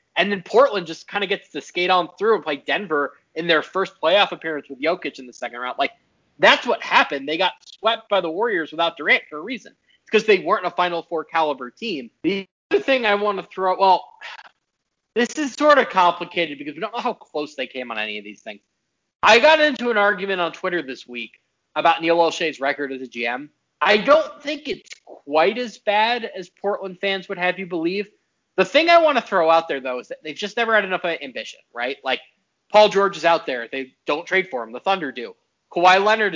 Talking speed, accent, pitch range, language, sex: 230 wpm, American, 160-215 Hz, English, male